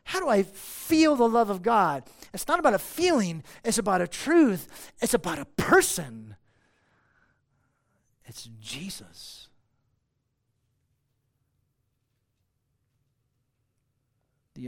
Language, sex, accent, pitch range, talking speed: English, male, American, 125-170 Hz, 100 wpm